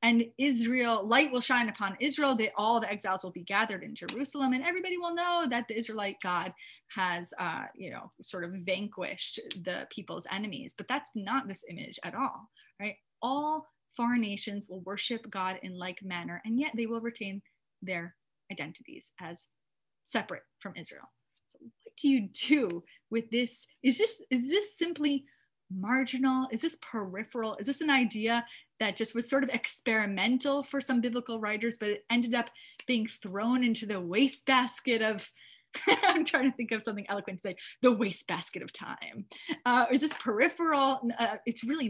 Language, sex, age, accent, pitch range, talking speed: English, female, 30-49, American, 195-260 Hz, 175 wpm